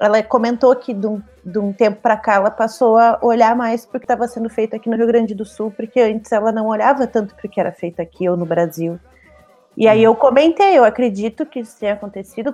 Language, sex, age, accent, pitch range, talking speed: Portuguese, female, 20-39, Brazilian, 200-245 Hz, 230 wpm